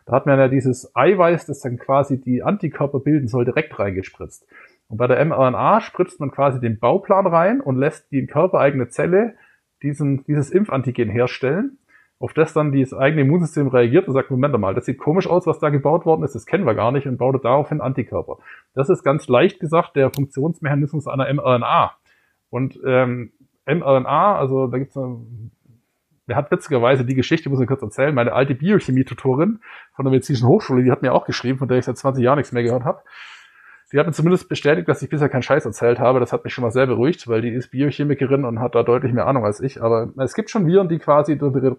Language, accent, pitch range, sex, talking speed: German, German, 125-155 Hz, male, 215 wpm